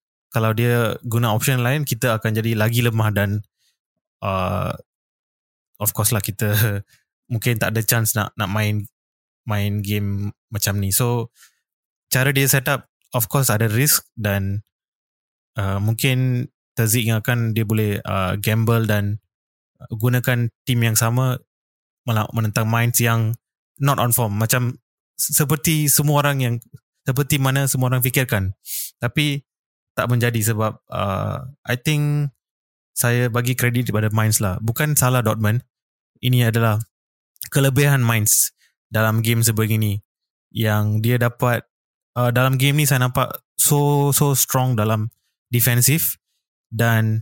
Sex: male